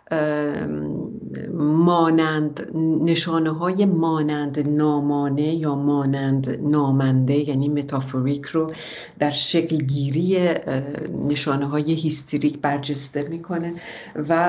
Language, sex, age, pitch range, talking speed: English, female, 50-69, 145-165 Hz, 85 wpm